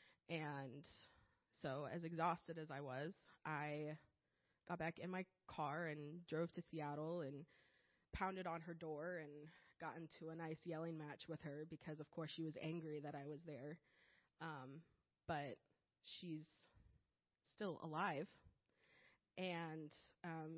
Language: English